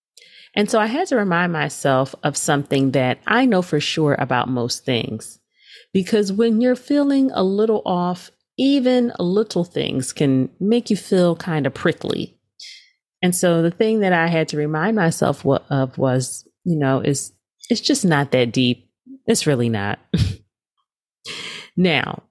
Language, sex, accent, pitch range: English, female, American, 135-200 Hz